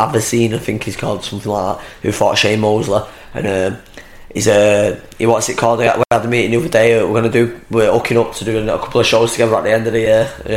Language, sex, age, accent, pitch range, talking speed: English, male, 10-29, British, 110-120 Hz, 280 wpm